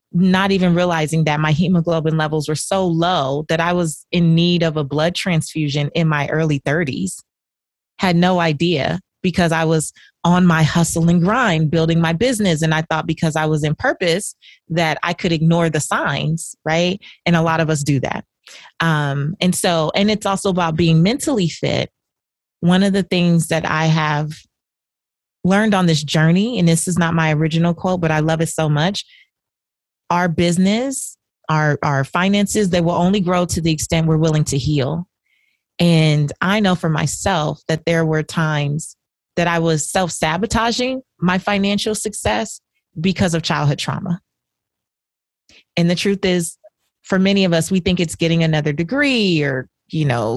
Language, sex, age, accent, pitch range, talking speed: English, female, 30-49, American, 155-185 Hz, 175 wpm